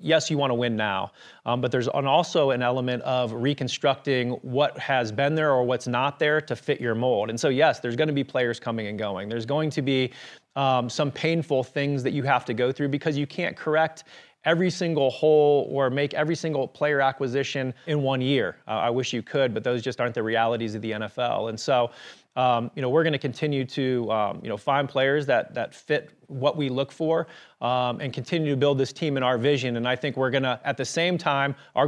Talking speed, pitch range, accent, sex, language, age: 235 wpm, 125-145 Hz, American, male, English, 30-49